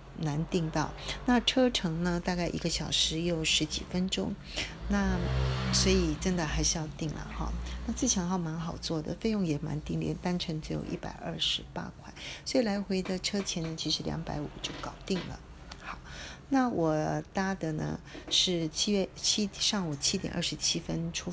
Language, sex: Chinese, female